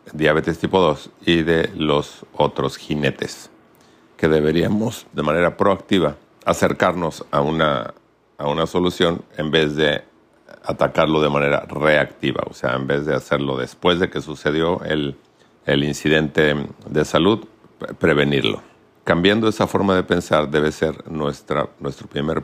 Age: 50-69